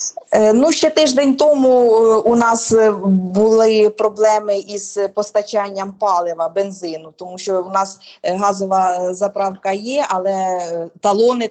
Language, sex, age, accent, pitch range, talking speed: Ukrainian, female, 20-39, native, 180-215 Hz, 110 wpm